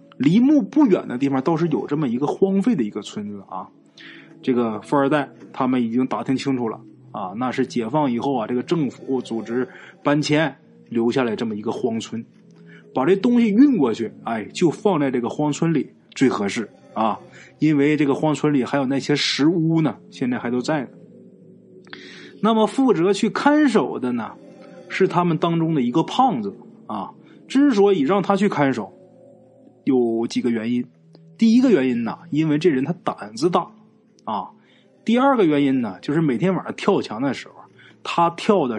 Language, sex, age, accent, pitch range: Chinese, male, 20-39, native, 125-200 Hz